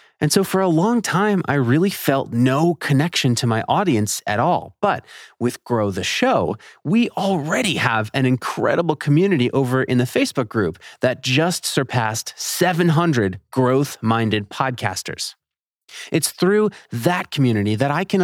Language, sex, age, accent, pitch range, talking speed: English, male, 30-49, American, 125-185 Hz, 150 wpm